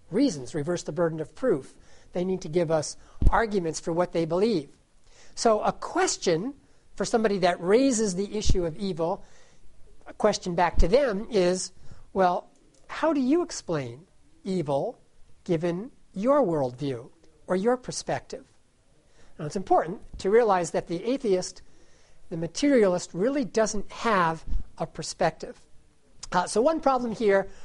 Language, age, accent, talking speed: English, 50-69, American, 140 wpm